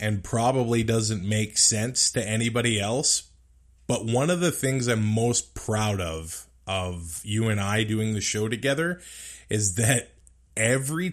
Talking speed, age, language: 150 wpm, 20-39, English